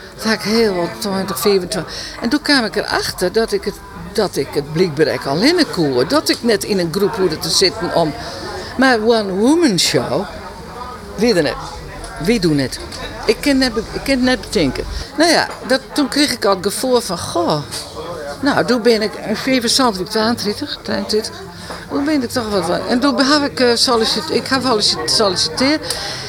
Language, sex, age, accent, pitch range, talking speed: Dutch, female, 50-69, Dutch, 195-275 Hz, 185 wpm